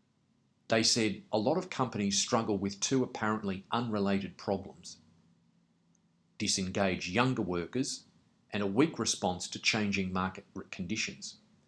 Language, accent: English, Australian